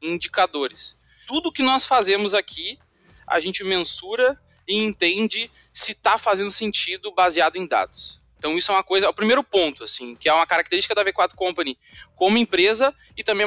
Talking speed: 175 wpm